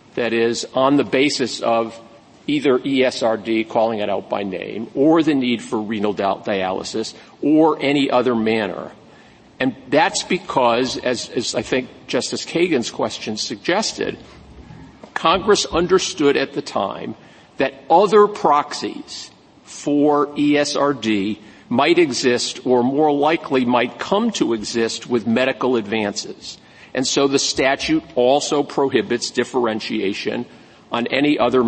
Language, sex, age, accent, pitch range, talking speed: English, male, 50-69, American, 115-150 Hz, 125 wpm